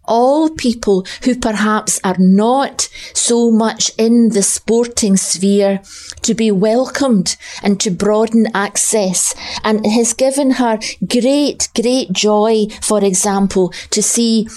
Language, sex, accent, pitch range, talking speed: English, female, British, 195-230 Hz, 130 wpm